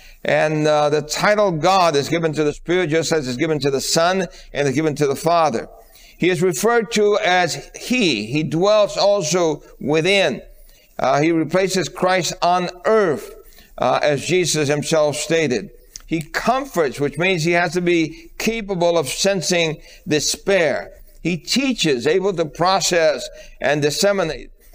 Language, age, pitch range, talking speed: English, 60-79, 155-195 Hz, 155 wpm